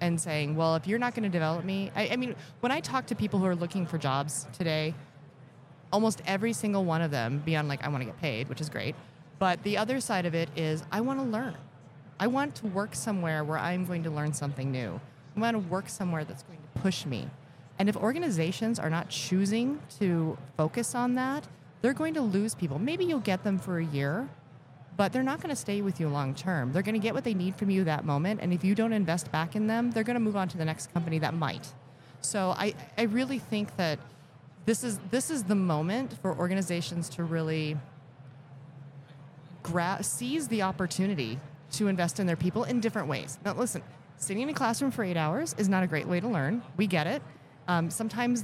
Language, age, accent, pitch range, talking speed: English, 30-49, American, 150-205 Hz, 230 wpm